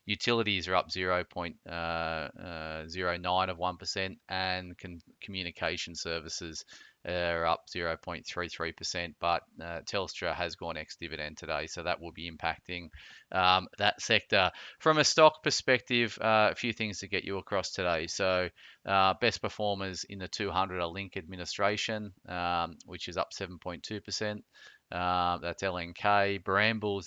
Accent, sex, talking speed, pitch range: Australian, male, 130 wpm, 85-100 Hz